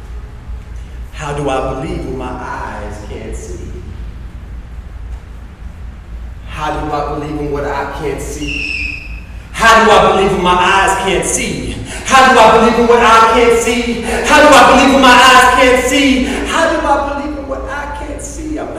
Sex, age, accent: male, 30-49, American